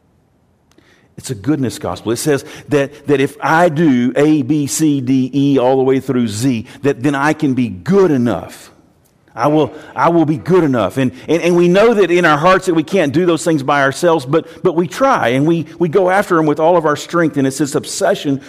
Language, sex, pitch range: English, male, 120-160 Hz